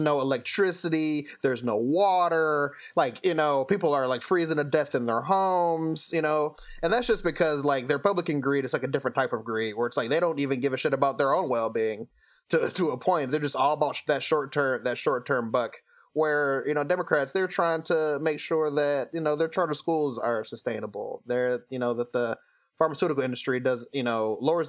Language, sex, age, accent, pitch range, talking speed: English, male, 20-39, American, 120-160 Hz, 215 wpm